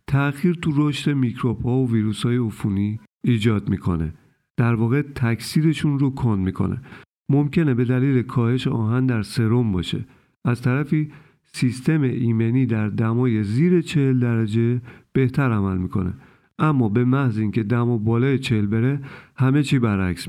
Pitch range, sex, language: 110-135 Hz, male, Persian